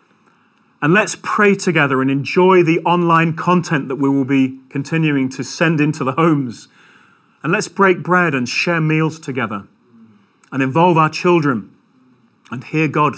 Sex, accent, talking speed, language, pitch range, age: male, British, 155 wpm, English, 135-180 Hz, 40-59